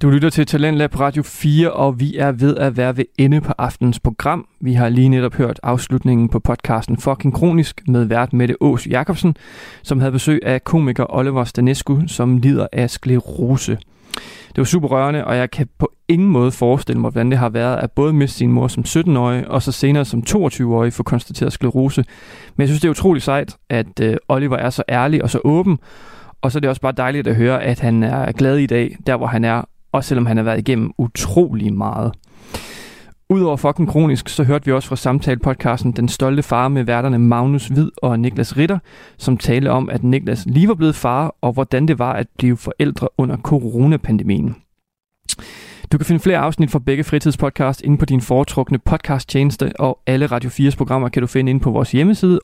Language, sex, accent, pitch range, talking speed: Danish, male, native, 125-145 Hz, 205 wpm